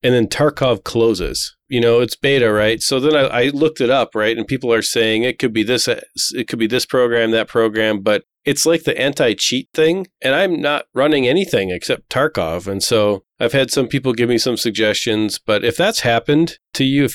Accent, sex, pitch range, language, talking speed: American, male, 105-125 Hz, English, 215 wpm